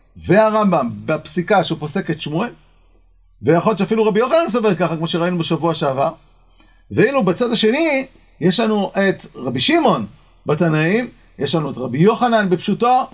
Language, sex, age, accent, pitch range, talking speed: Hebrew, male, 40-59, native, 135-205 Hz, 145 wpm